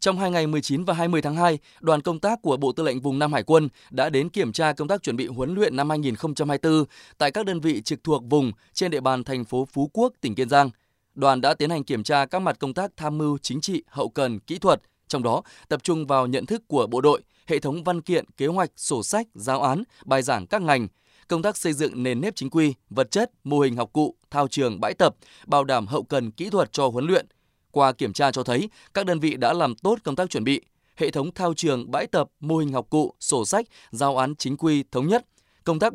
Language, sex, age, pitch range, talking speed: Vietnamese, male, 20-39, 135-170 Hz, 255 wpm